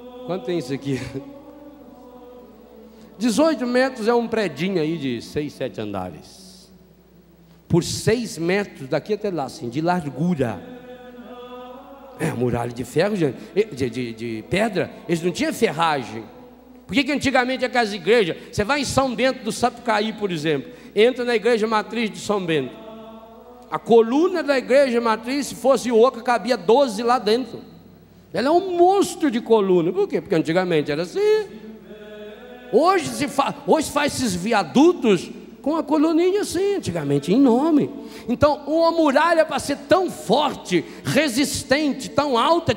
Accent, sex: Brazilian, male